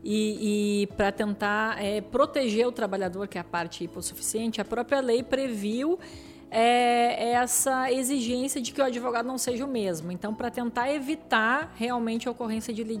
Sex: female